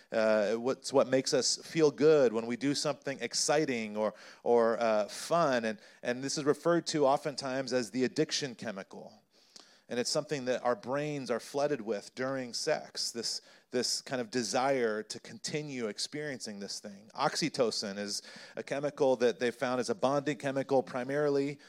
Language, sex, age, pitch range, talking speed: English, male, 30-49, 120-150 Hz, 165 wpm